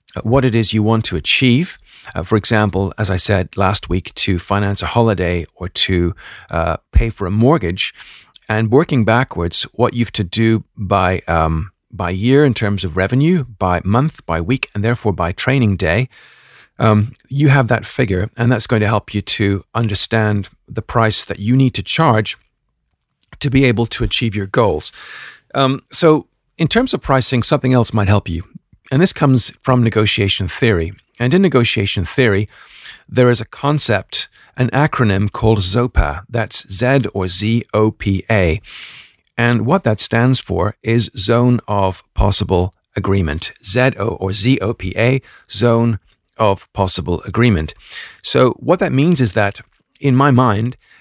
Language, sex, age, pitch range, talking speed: English, male, 40-59, 100-125 Hz, 170 wpm